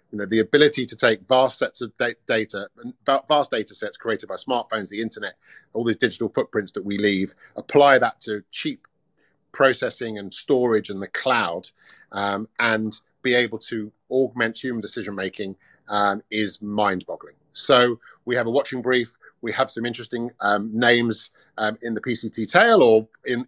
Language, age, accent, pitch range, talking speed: English, 30-49, British, 110-130 Hz, 170 wpm